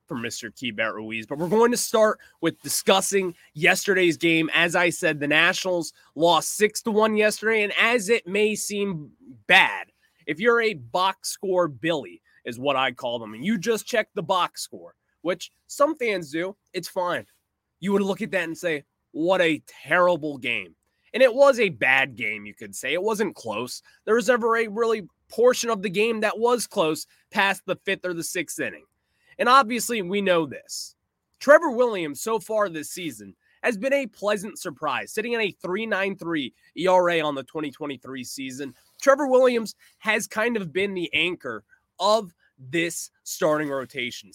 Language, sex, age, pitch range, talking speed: English, male, 20-39, 150-220 Hz, 175 wpm